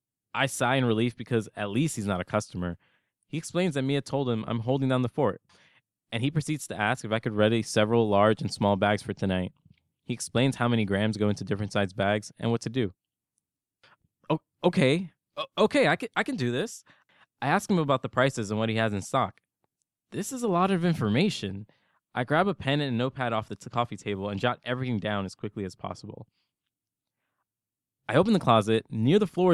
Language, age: English, 20-39